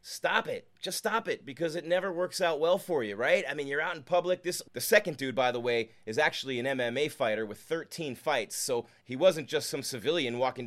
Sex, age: male, 30-49